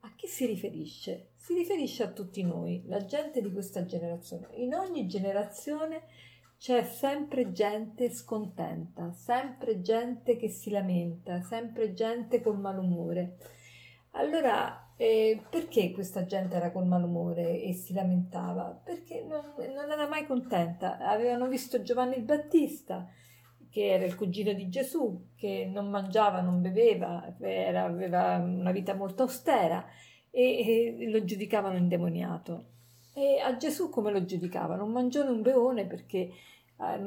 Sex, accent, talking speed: female, native, 135 wpm